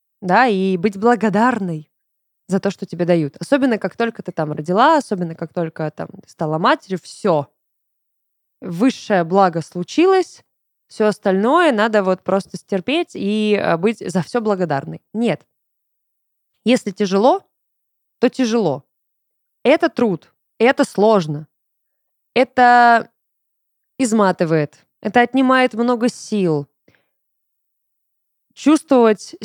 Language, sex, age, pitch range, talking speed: Russian, female, 20-39, 190-250 Hz, 105 wpm